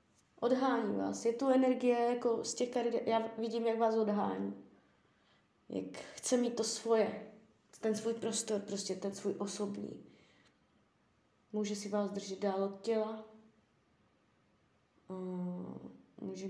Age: 20-39